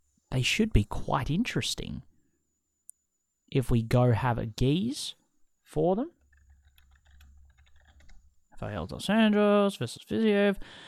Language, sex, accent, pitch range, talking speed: English, male, Australian, 115-140 Hz, 100 wpm